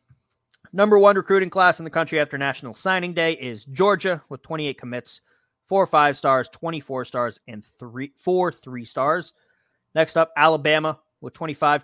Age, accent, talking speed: 30-49, American, 150 wpm